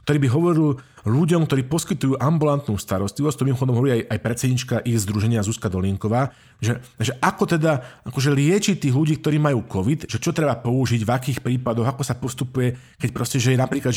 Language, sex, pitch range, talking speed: Slovak, male, 120-145 Hz, 195 wpm